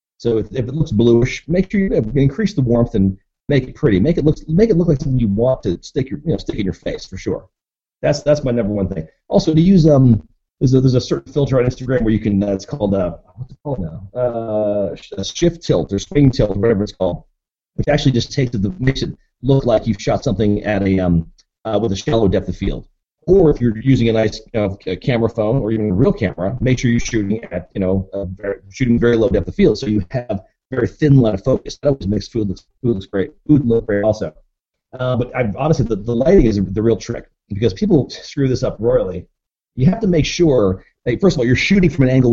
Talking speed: 260 wpm